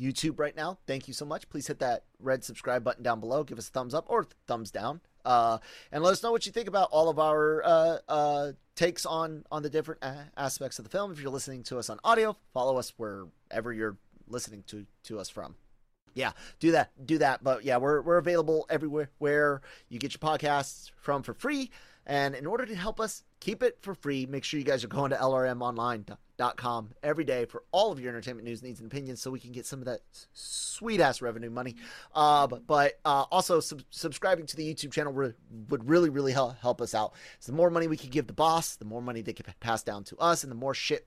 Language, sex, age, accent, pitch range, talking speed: English, male, 30-49, American, 120-155 Hz, 235 wpm